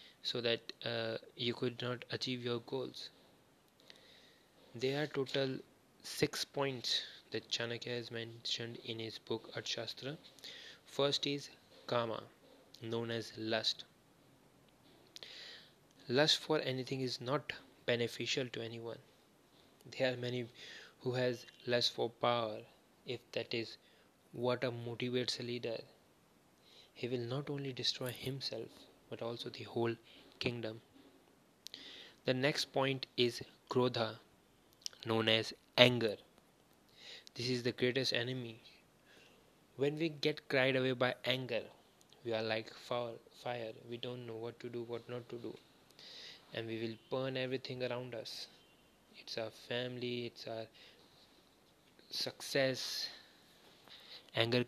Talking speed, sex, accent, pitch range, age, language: 125 wpm, male, native, 115-130 Hz, 20-39, Hindi